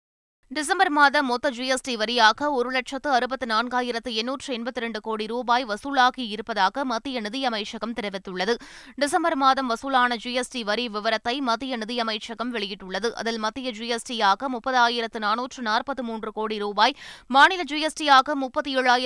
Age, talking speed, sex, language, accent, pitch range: 20-39, 100 wpm, female, Tamil, native, 225-265 Hz